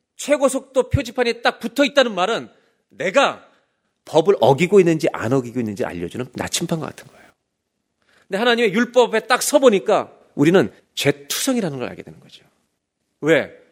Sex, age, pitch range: male, 40-59, 175-250 Hz